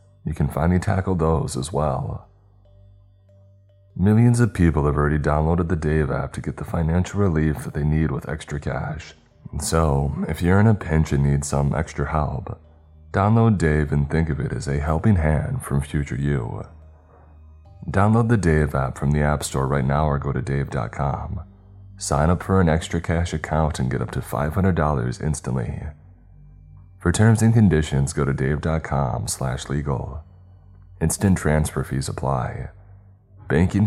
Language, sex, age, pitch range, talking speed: English, male, 30-49, 75-95 Hz, 160 wpm